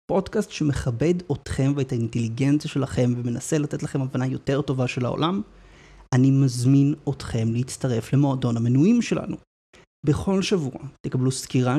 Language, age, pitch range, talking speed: Hebrew, 30-49, 125-150 Hz, 125 wpm